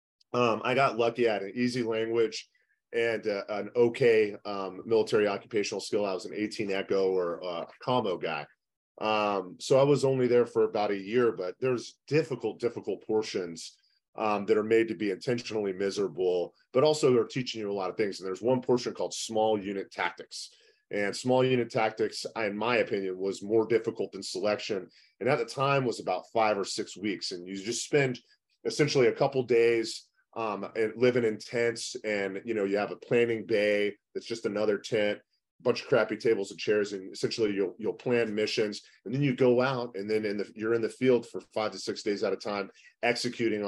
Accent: American